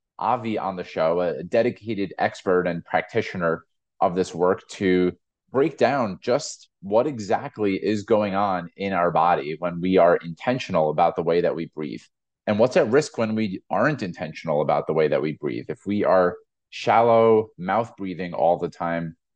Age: 30-49